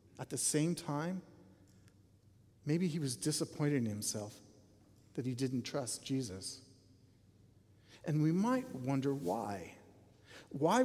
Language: English